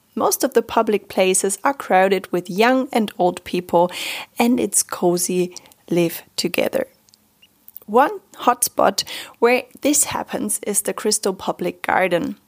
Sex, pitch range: female, 185-260 Hz